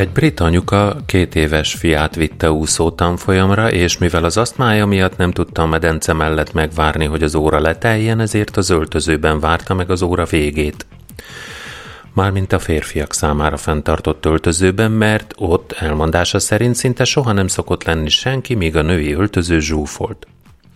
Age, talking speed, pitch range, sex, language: 30-49, 155 wpm, 80-105 Hz, male, Hungarian